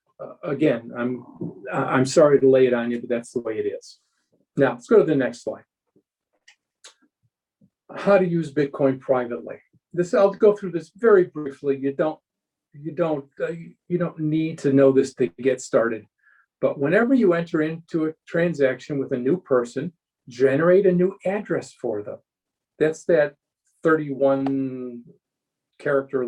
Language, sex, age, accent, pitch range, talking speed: English, male, 50-69, American, 135-190 Hz, 160 wpm